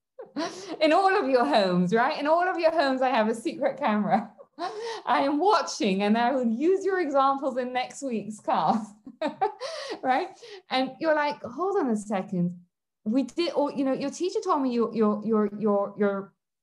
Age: 20-39